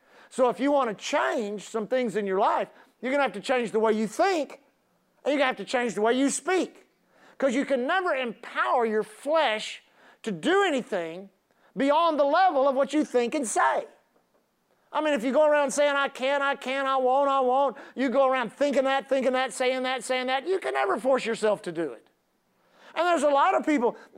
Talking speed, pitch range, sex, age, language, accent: 225 wpm, 255-320 Hz, male, 50-69, English, American